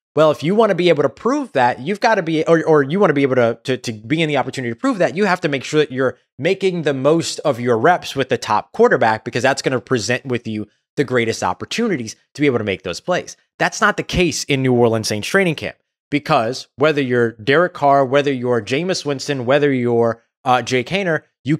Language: English